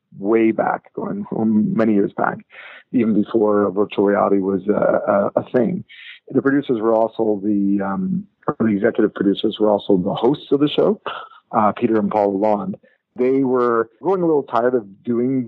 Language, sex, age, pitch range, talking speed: English, male, 40-59, 105-125 Hz, 175 wpm